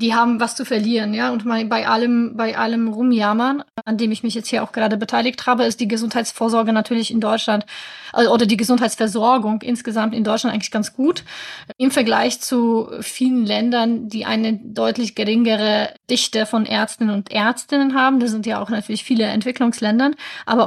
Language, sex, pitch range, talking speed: German, female, 220-245 Hz, 175 wpm